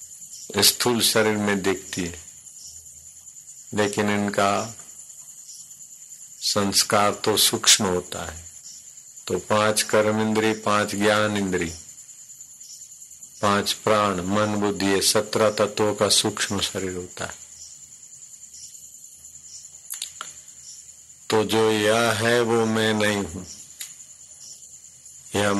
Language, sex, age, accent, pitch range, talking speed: Hindi, male, 50-69, native, 95-105 Hz, 95 wpm